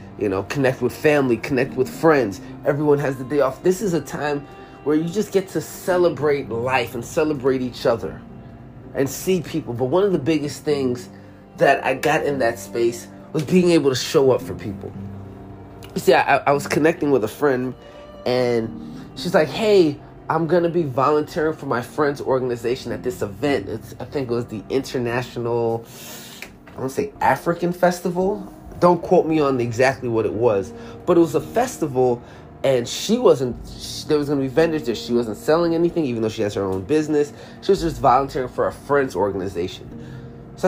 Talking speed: 195 wpm